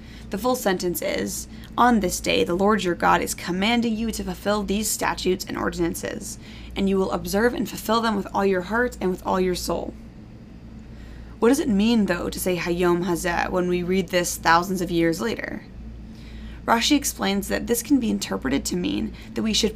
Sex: female